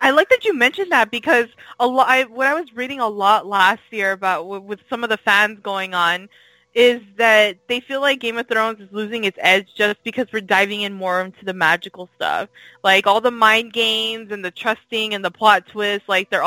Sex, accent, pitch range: female, American, 190-225 Hz